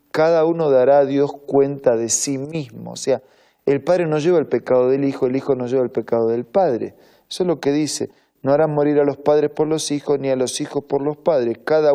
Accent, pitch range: Argentinian, 125-155 Hz